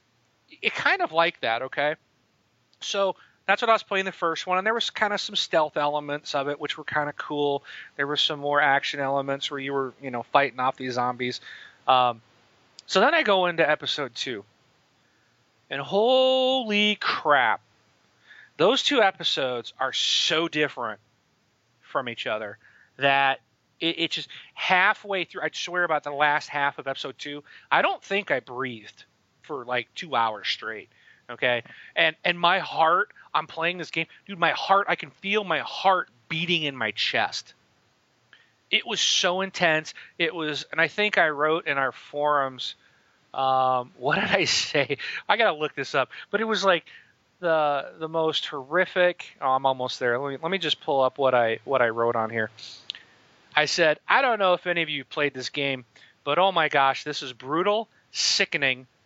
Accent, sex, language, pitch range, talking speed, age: American, male, English, 135-175 Hz, 185 wpm, 30-49